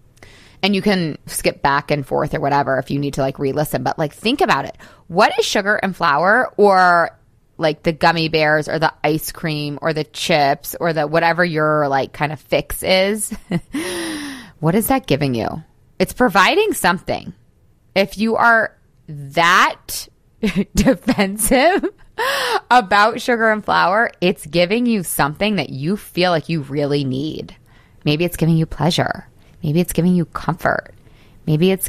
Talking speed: 160 wpm